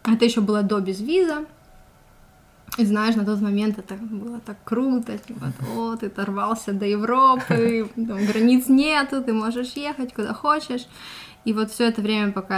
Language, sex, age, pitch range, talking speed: Russian, female, 20-39, 195-235 Hz, 165 wpm